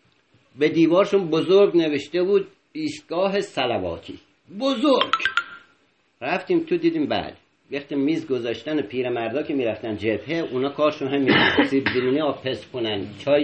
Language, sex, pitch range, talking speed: Persian, male, 140-200 Hz, 130 wpm